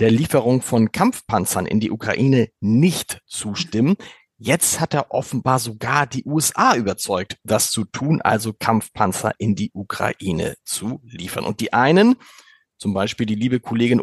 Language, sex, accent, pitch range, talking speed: German, male, German, 115-150 Hz, 150 wpm